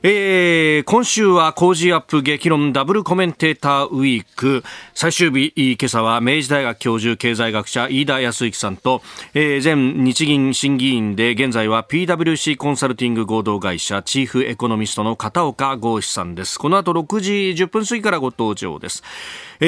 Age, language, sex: 40-59, Japanese, male